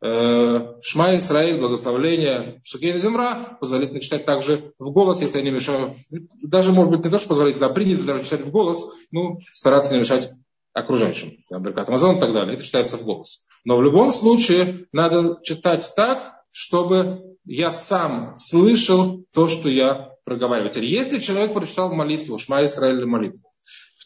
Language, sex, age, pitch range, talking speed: Russian, male, 20-39, 140-185 Hz, 165 wpm